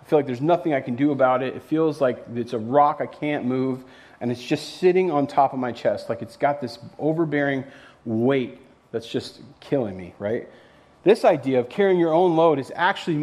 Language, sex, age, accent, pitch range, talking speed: English, male, 30-49, American, 120-155 Hz, 215 wpm